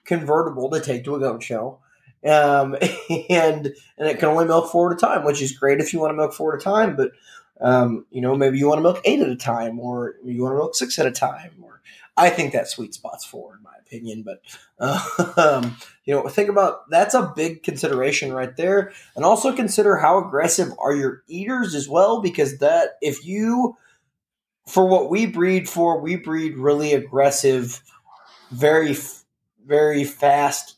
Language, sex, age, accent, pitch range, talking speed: English, male, 20-39, American, 135-185 Hz, 200 wpm